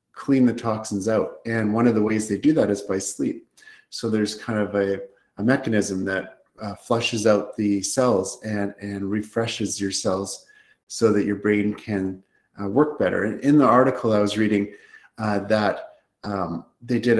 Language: English